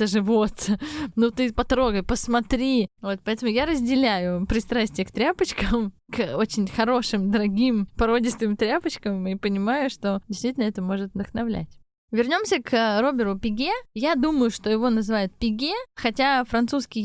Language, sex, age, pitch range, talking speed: Russian, female, 20-39, 215-260 Hz, 130 wpm